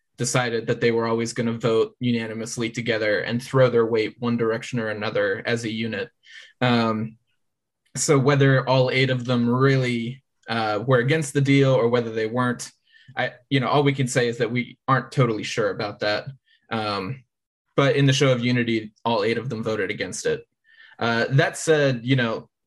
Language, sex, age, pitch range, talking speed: English, male, 20-39, 115-130 Hz, 190 wpm